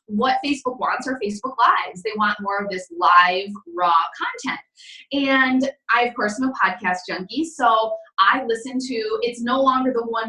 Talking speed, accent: 180 wpm, American